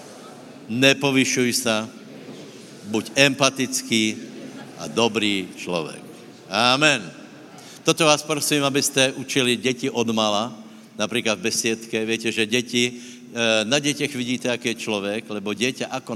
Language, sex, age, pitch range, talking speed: Slovak, male, 60-79, 105-125 Hz, 120 wpm